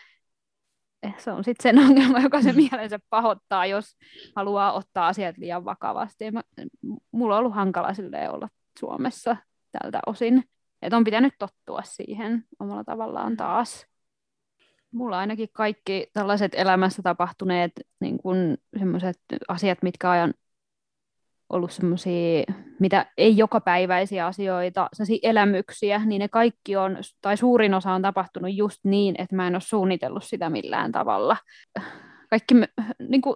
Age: 20-39